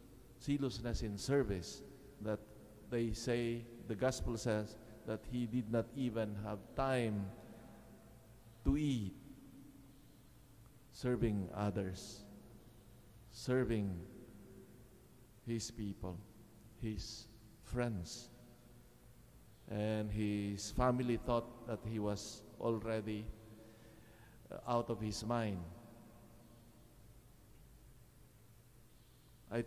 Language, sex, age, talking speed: English, male, 50-69, 75 wpm